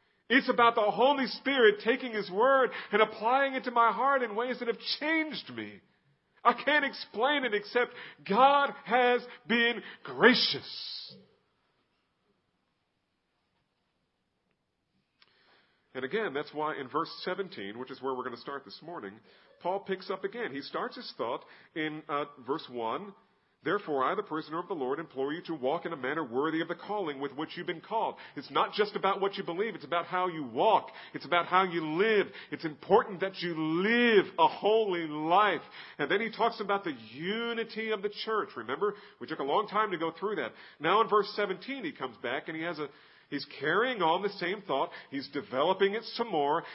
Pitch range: 160-230 Hz